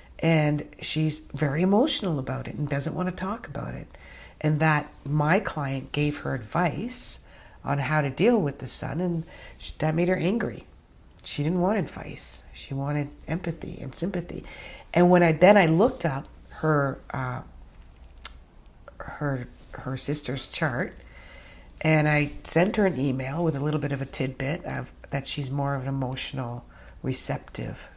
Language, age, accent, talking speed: English, 50-69, American, 160 wpm